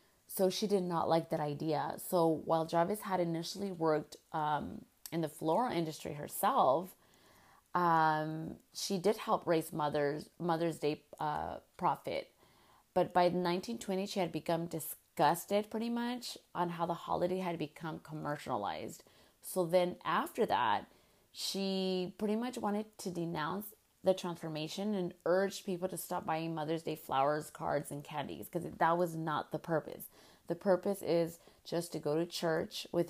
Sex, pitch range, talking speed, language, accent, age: female, 150-180 Hz, 150 wpm, English, American, 30-49